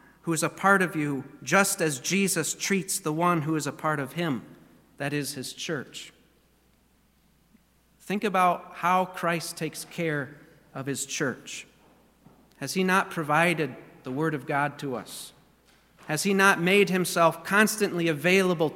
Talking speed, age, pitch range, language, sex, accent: 155 wpm, 40-59, 155-185 Hz, English, male, American